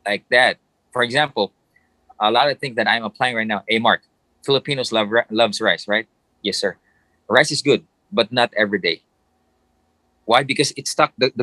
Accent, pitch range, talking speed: Filipino, 105-135 Hz, 185 wpm